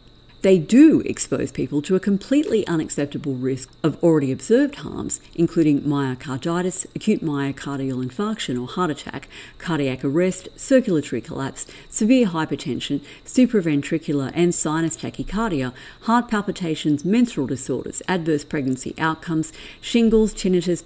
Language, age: English, 50-69